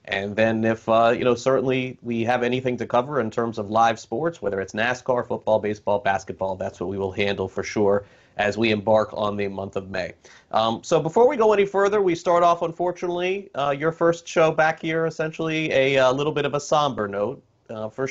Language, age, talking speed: English, 30-49, 220 wpm